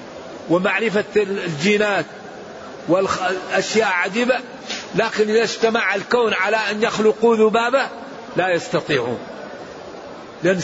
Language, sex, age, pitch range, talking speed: English, male, 50-69, 205-240 Hz, 85 wpm